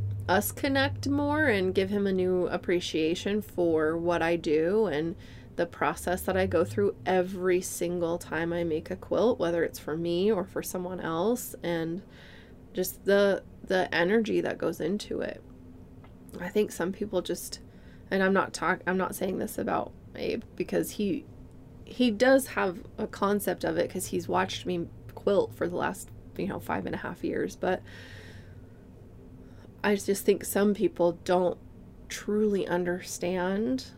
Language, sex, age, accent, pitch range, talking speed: English, female, 20-39, American, 170-200 Hz, 160 wpm